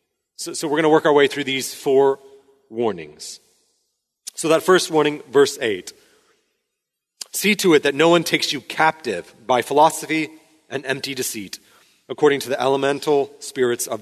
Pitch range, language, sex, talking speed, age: 140-230 Hz, English, male, 165 wpm, 30-49